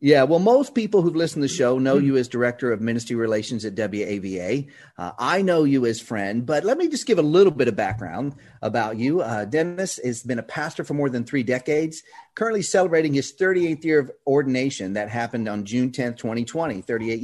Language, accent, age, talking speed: English, American, 40-59, 210 wpm